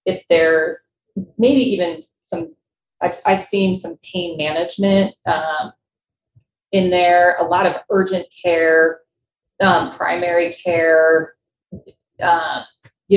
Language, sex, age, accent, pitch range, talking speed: English, female, 30-49, American, 160-195 Hz, 110 wpm